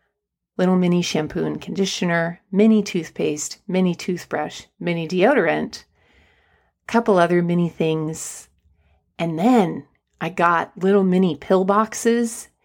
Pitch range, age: 165-225 Hz, 40-59